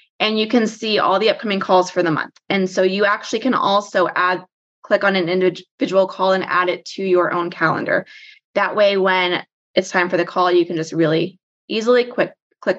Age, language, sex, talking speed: 20-39, English, female, 205 wpm